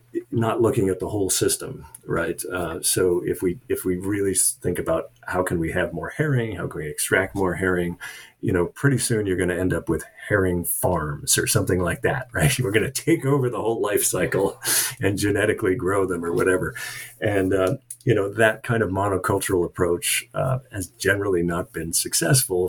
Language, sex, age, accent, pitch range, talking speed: English, male, 40-59, American, 90-125 Hz, 200 wpm